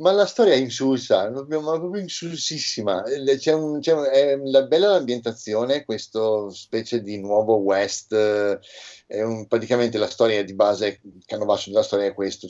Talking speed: 150 wpm